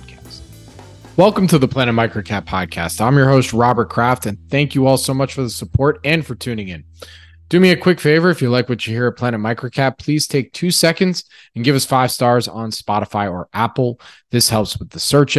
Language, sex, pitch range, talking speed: English, male, 105-130 Hz, 220 wpm